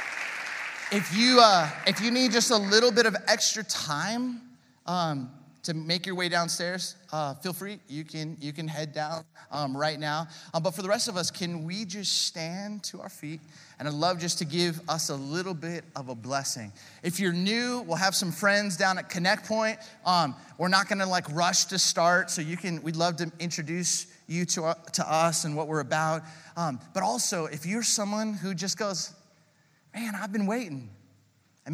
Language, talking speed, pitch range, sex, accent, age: English, 200 wpm, 140-180 Hz, male, American, 30-49